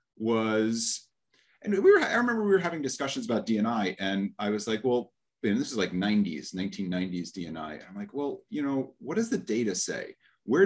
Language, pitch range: English, 95-140 Hz